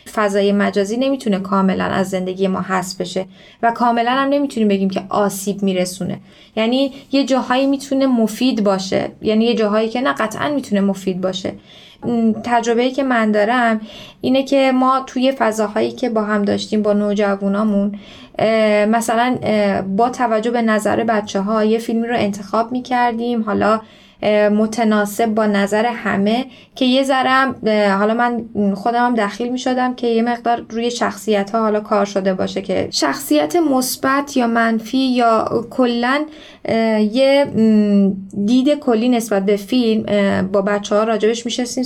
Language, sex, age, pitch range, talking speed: Persian, female, 10-29, 205-245 Hz, 140 wpm